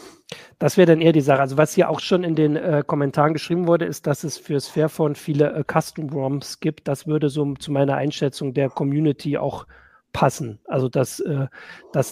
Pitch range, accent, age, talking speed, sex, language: 140-165 Hz, German, 40-59, 205 wpm, male, German